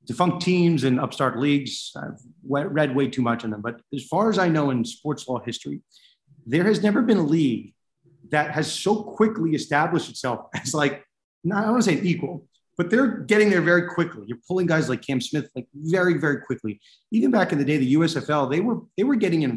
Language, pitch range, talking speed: English, 125-175 Hz, 220 wpm